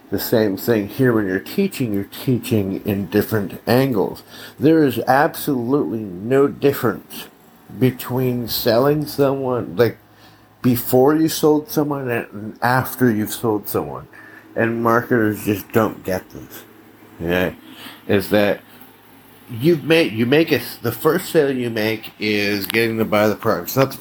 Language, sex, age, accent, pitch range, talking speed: English, male, 50-69, American, 105-130 Hz, 135 wpm